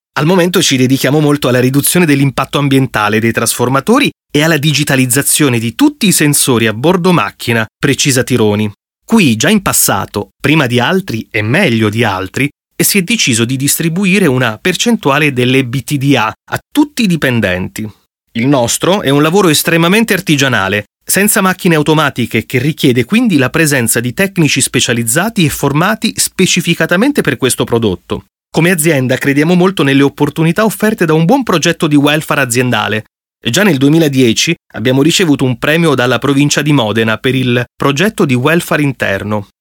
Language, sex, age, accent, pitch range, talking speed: Italian, male, 30-49, native, 120-170 Hz, 155 wpm